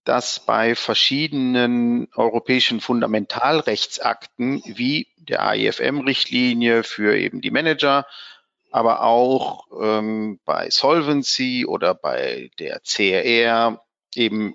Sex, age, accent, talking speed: male, 50-69, German, 90 wpm